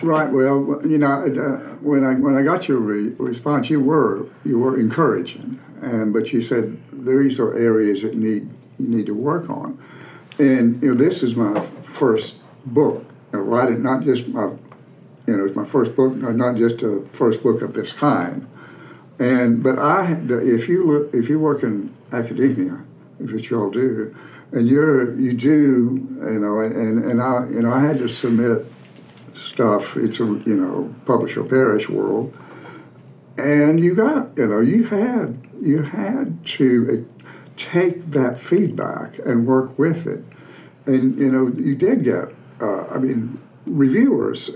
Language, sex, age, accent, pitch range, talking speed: English, male, 60-79, American, 115-145 Hz, 175 wpm